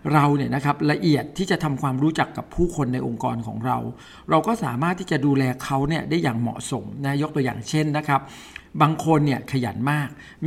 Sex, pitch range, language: male, 130-160 Hz, Thai